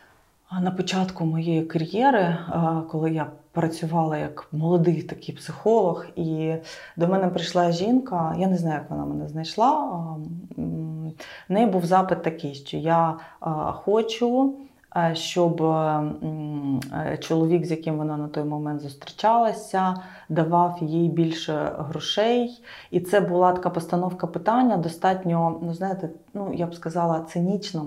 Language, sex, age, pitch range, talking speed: Ukrainian, female, 30-49, 160-185 Hz, 125 wpm